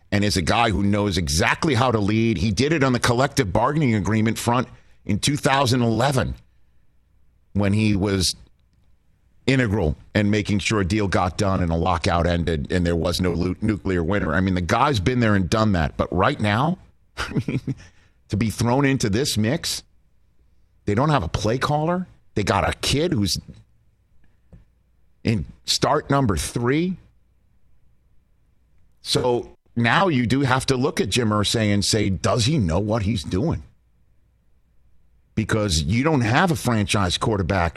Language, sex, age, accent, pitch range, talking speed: English, male, 50-69, American, 90-130 Hz, 160 wpm